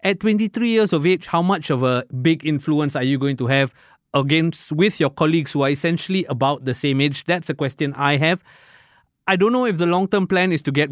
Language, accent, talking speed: English, Malaysian, 230 wpm